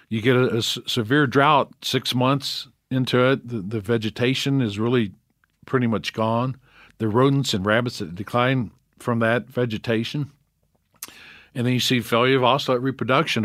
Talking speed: 155 wpm